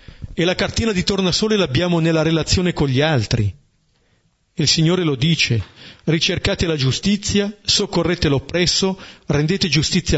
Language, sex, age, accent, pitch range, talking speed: Italian, male, 40-59, native, 135-180 Hz, 130 wpm